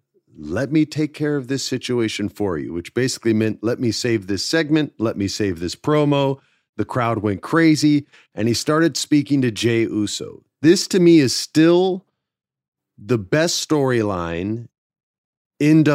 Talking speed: 160 wpm